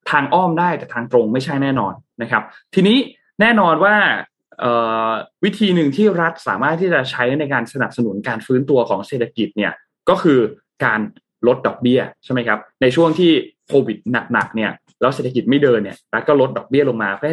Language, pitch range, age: Thai, 120-165 Hz, 20-39